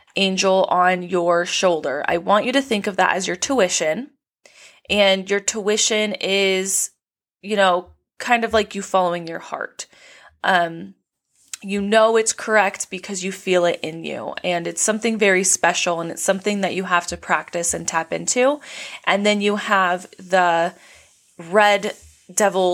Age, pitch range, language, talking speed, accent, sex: 20-39, 175-215 Hz, English, 160 wpm, American, female